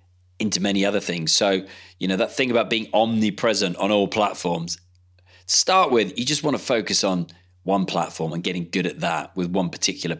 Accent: British